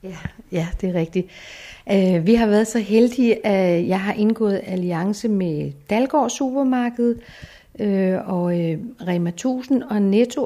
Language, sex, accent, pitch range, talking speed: Danish, female, native, 185-225 Hz, 150 wpm